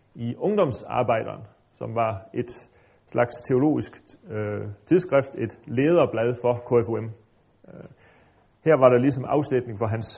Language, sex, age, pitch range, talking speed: Danish, male, 30-49, 115-150 Hz, 110 wpm